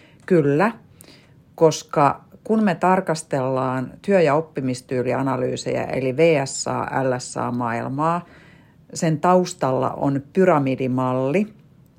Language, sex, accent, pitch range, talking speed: Finnish, female, native, 130-165 Hz, 75 wpm